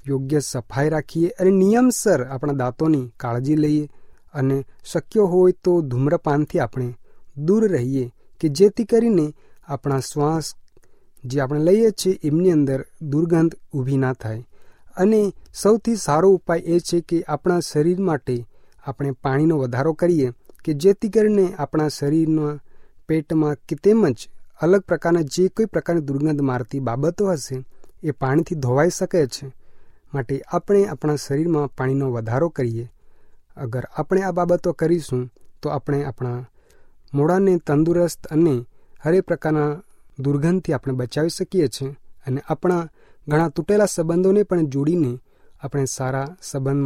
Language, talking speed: Hindi, 110 wpm